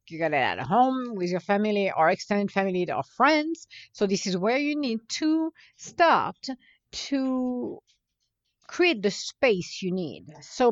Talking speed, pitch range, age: 155 wpm, 180-260 Hz, 50-69